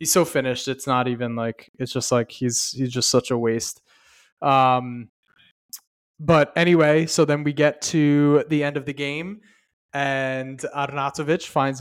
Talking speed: 165 wpm